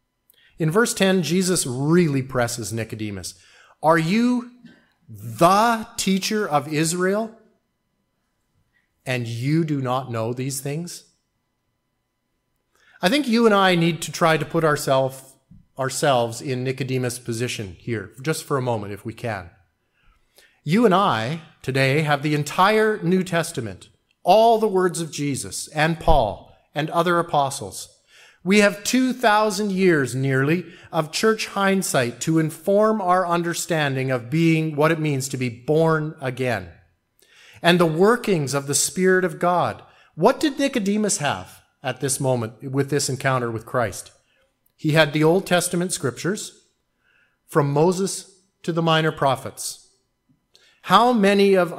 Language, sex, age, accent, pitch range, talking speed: English, male, 30-49, American, 130-185 Hz, 135 wpm